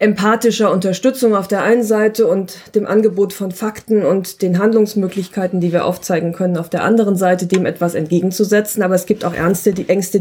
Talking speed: 175 wpm